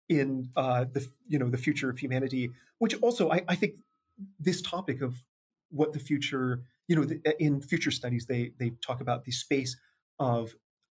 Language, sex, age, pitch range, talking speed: English, male, 30-49, 125-165 Hz, 180 wpm